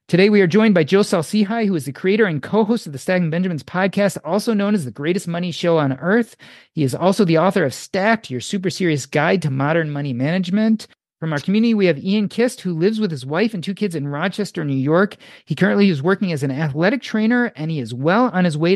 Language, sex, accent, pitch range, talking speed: English, male, American, 155-205 Hz, 245 wpm